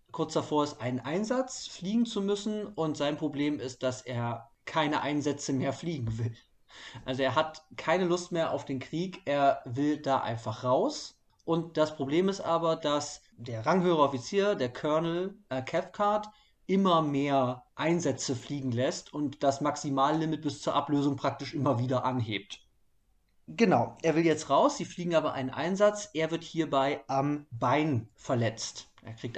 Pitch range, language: 135-175 Hz, German